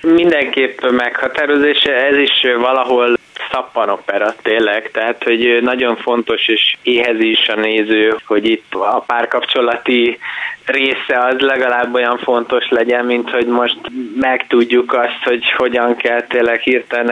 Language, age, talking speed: Hungarian, 20-39, 130 wpm